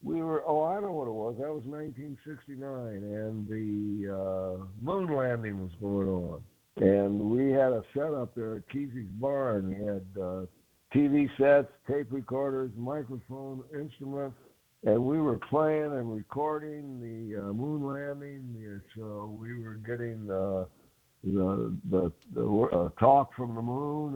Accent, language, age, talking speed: American, English, 60-79, 160 wpm